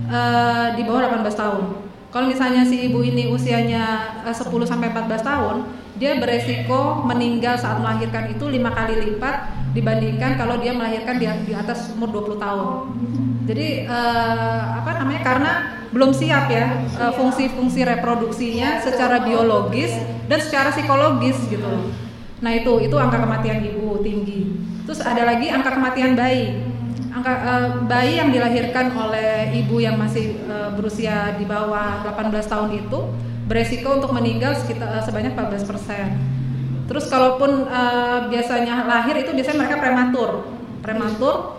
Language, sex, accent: Indonesian, female, native